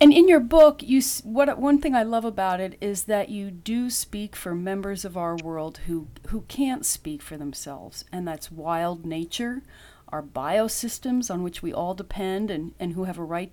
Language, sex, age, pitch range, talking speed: English, female, 40-59, 170-235 Hz, 200 wpm